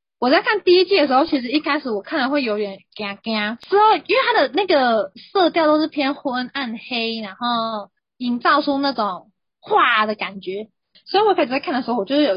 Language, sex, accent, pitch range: Chinese, female, native, 215-305 Hz